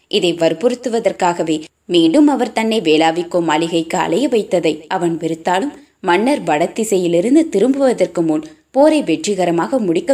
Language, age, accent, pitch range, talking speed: Tamil, 20-39, native, 170-235 Hz, 105 wpm